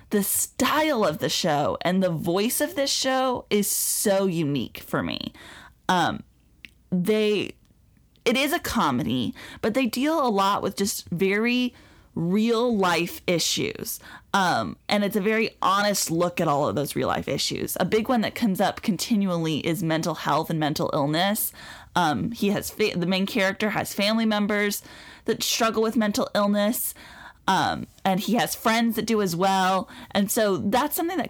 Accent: American